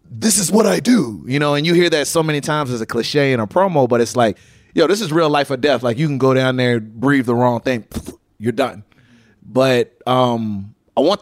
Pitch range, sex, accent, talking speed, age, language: 120-150 Hz, male, American, 245 wpm, 20-39, English